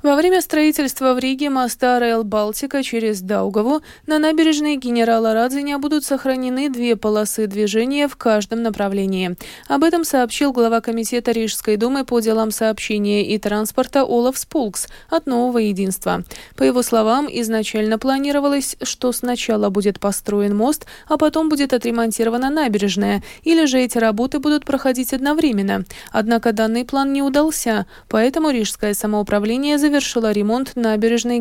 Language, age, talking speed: Russian, 20-39, 140 wpm